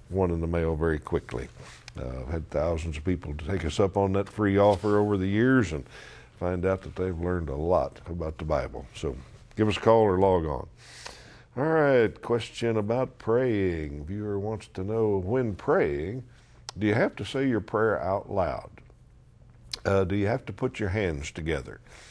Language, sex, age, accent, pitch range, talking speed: English, male, 60-79, American, 85-110 Hz, 185 wpm